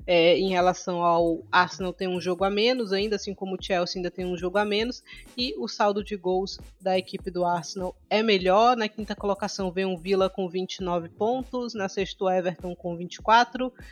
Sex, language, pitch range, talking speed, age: female, Portuguese, 185-220 Hz, 205 wpm, 20-39